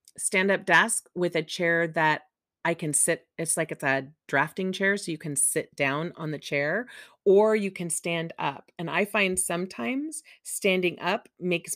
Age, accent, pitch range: 30-49, American, 155-195 Hz